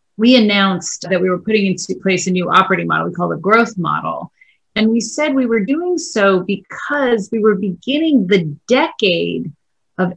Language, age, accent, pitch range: English, 30-49, American, 165-215 Hz